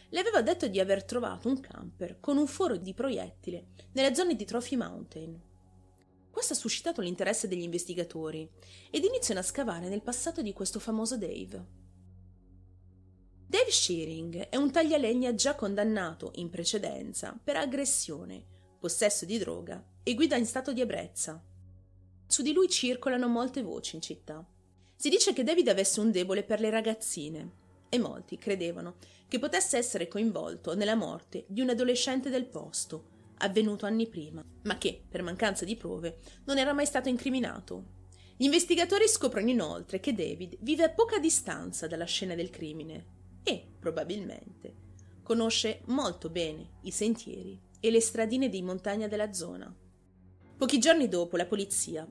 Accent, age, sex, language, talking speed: native, 30-49, female, Italian, 150 wpm